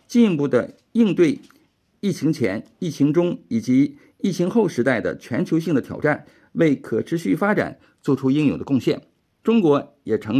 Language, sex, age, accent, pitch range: Chinese, male, 50-69, native, 130-195 Hz